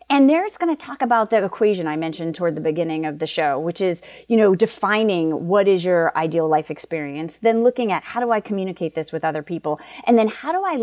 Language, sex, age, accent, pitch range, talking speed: English, female, 30-49, American, 175-235 Hz, 245 wpm